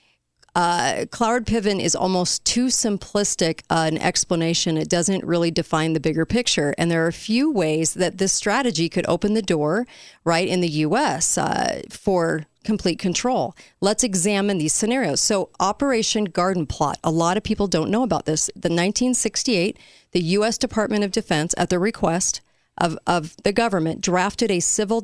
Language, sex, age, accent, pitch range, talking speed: English, female, 40-59, American, 165-205 Hz, 175 wpm